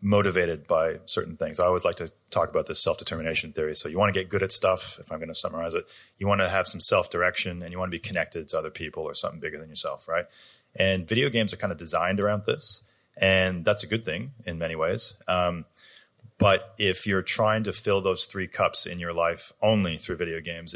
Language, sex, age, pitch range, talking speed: English, male, 30-49, 85-100 Hz, 235 wpm